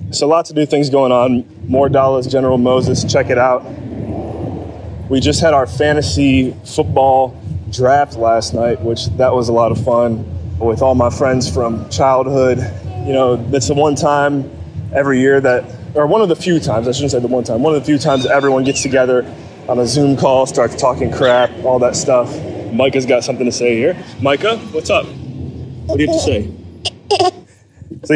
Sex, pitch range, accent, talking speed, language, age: male, 115-140 Hz, American, 195 wpm, English, 20-39